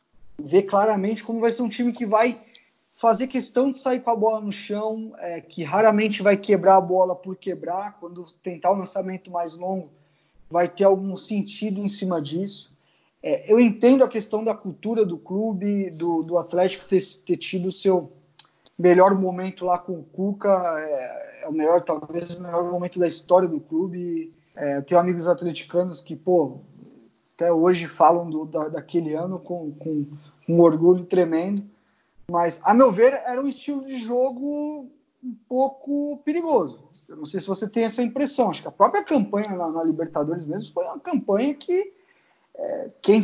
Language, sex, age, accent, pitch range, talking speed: Portuguese, male, 20-39, Brazilian, 180-240 Hz, 180 wpm